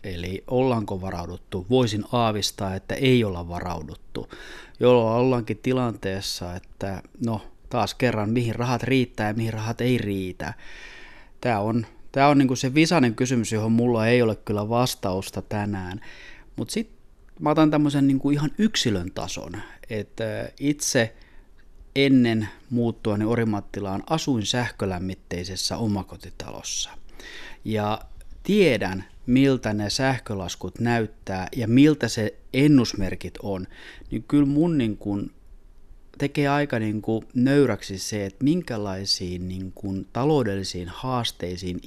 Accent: native